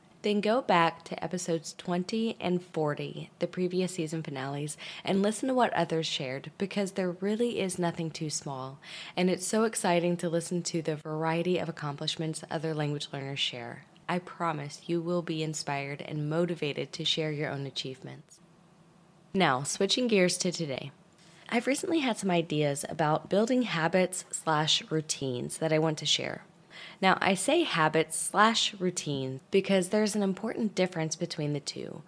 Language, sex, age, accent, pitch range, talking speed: English, female, 10-29, American, 155-185 Hz, 165 wpm